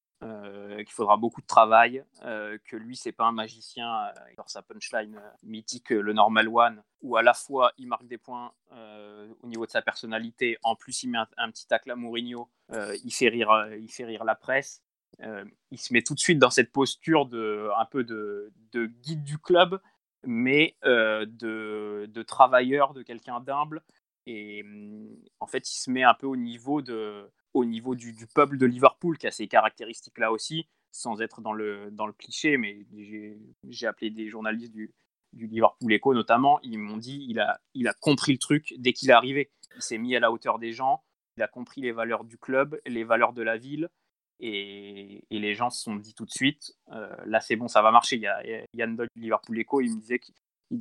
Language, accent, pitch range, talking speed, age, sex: French, French, 110-135 Hz, 215 wpm, 20-39, male